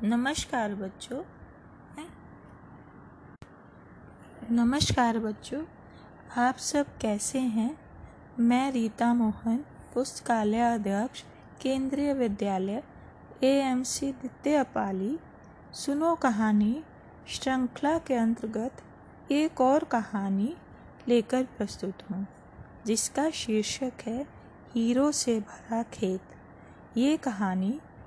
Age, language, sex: 20-39, Hindi, female